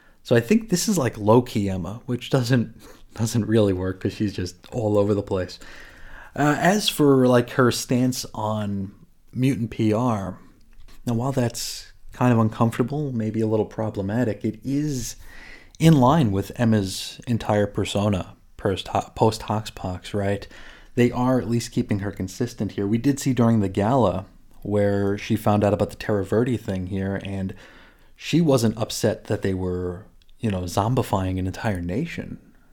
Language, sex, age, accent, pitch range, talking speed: English, male, 30-49, American, 100-125 Hz, 160 wpm